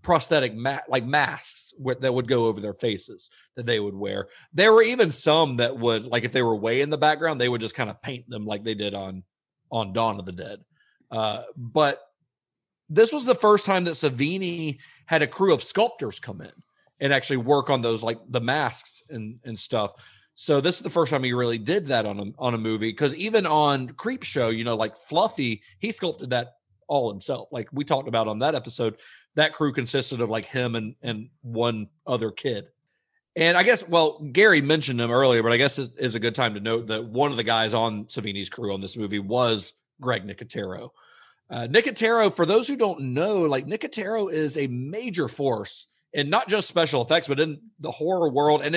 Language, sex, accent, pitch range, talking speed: English, male, American, 115-155 Hz, 215 wpm